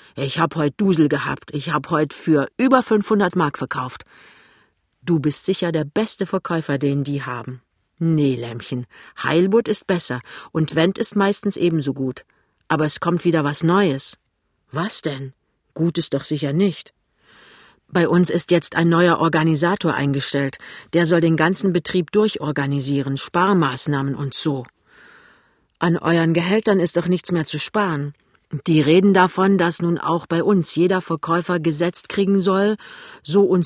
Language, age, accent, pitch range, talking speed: German, 50-69, German, 150-190 Hz, 155 wpm